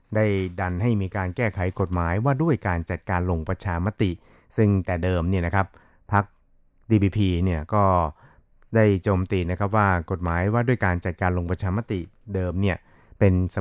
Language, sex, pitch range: Thai, male, 90-105 Hz